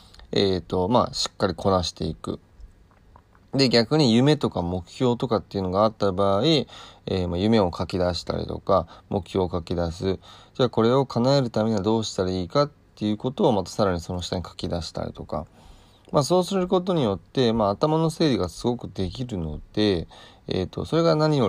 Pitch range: 90-115 Hz